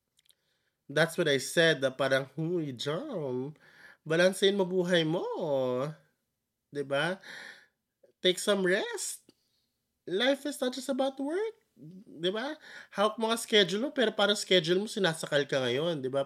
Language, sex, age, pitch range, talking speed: Filipino, male, 20-39, 130-180 Hz, 125 wpm